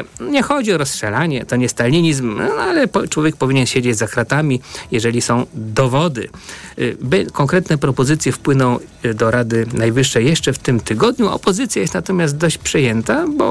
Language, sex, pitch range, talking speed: Polish, male, 115-145 Hz, 140 wpm